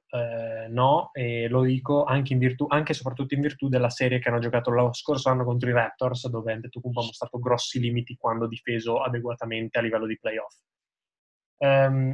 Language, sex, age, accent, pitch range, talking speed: Italian, male, 20-39, native, 120-145 Hz, 185 wpm